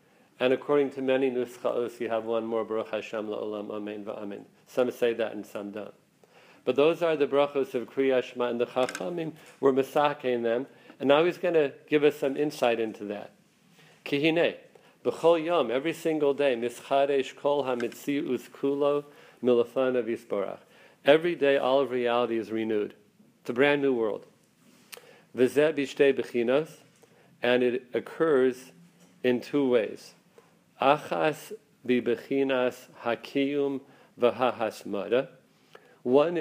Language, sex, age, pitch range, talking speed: English, male, 50-69, 125-145 Hz, 125 wpm